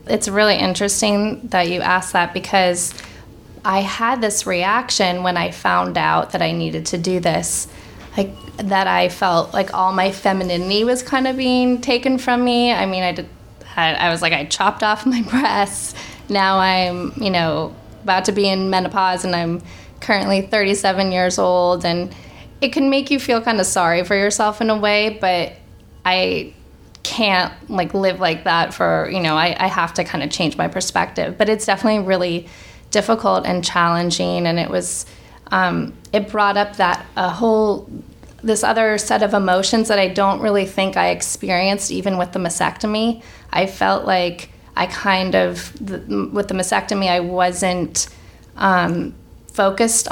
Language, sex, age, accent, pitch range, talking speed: English, female, 20-39, American, 175-210 Hz, 170 wpm